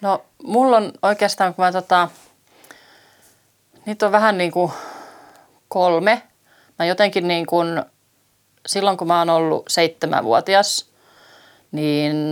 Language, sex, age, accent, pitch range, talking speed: Finnish, female, 30-49, native, 155-185 Hz, 115 wpm